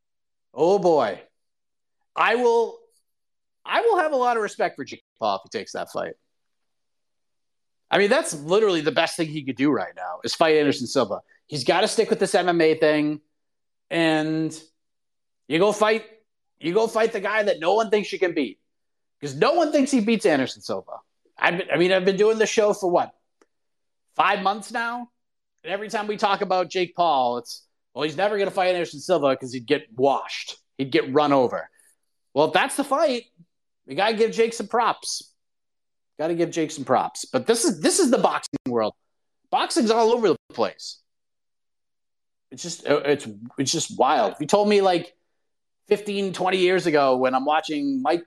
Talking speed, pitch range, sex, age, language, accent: 195 wpm, 155-215 Hz, male, 30-49, English, American